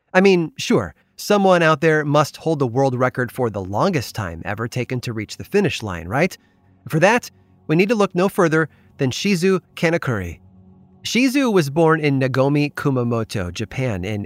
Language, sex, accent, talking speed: English, male, American, 175 wpm